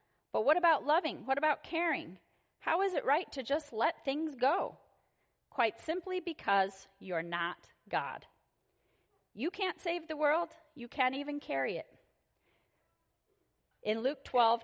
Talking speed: 145 wpm